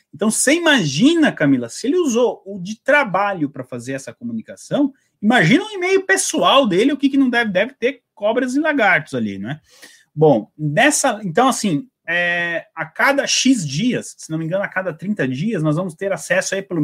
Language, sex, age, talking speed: Portuguese, male, 30-49, 190 wpm